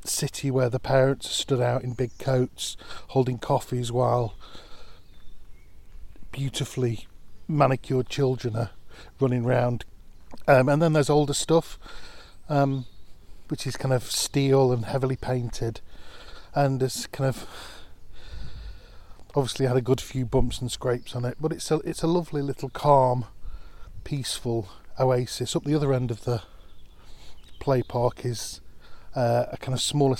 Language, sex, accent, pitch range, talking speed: English, male, British, 110-135 Hz, 140 wpm